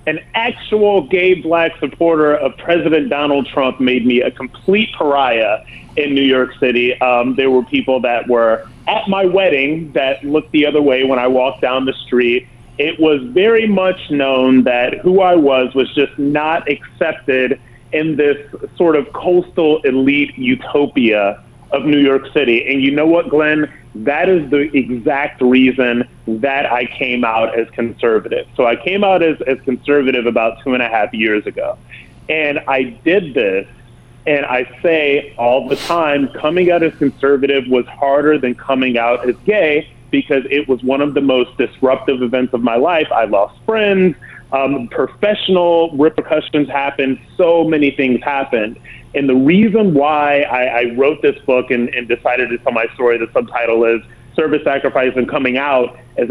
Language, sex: English, male